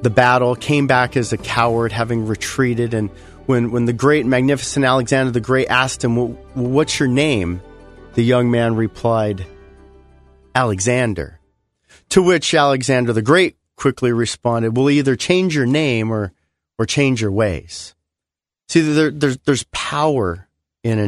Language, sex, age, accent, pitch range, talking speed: English, male, 40-59, American, 90-145 Hz, 150 wpm